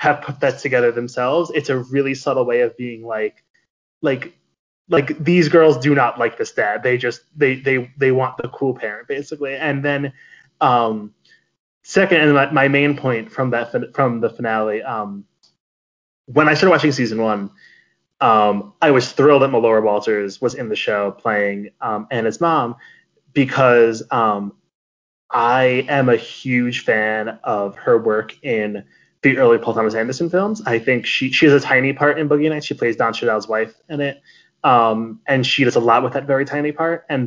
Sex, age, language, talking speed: male, 20-39, English, 185 wpm